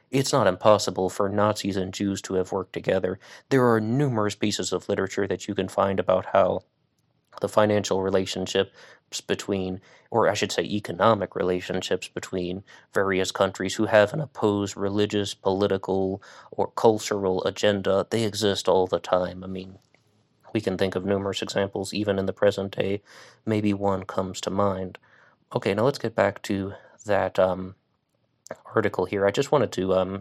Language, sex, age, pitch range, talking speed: English, male, 20-39, 95-105 Hz, 165 wpm